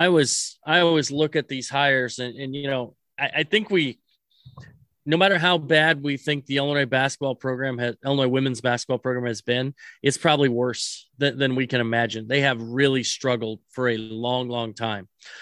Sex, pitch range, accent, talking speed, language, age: male, 130-150 Hz, American, 195 wpm, English, 30-49